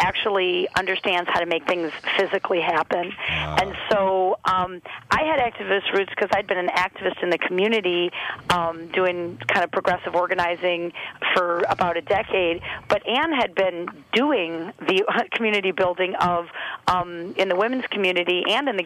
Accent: American